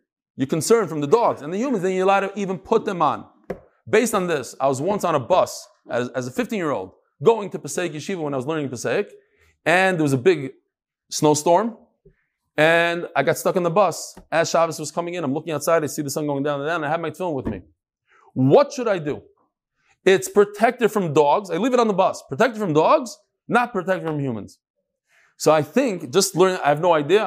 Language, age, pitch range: English, 20-39, 150-215 Hz